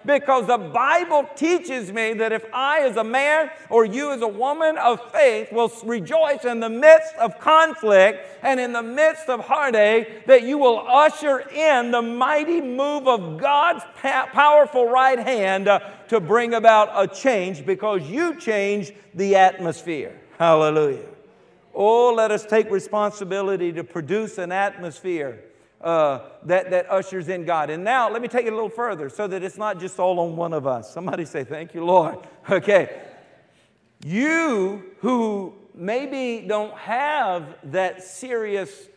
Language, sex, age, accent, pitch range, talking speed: English, male, 50-69, American, 185-245 Hz, 160 wpm